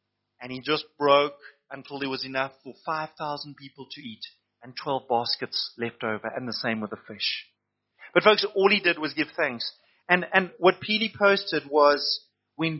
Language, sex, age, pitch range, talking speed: English, male, 30-49, 155-230 Hz, 185 wpm